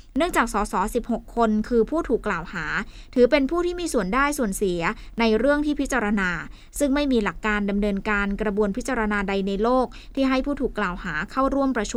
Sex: female